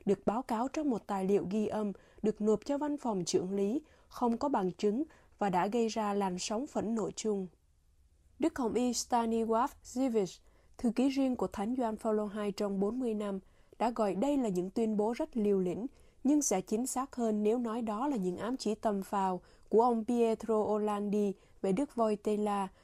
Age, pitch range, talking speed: 20-39, 205-245 Hz, 200 wpm